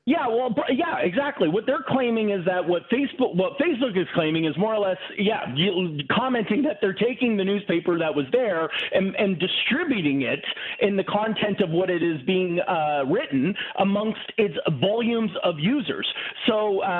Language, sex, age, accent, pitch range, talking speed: English, male, 40-59, American, 165-215 Hz, 180 wpm